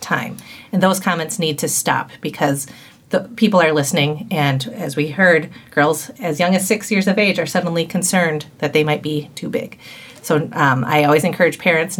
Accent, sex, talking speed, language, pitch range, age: American, female, 195 wpm, English, 150-180 Hz, 30-49